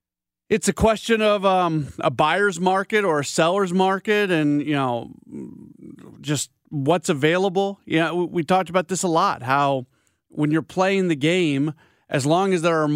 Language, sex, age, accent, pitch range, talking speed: English, male, 40-59, American, 150-195 Hz, 180 wpm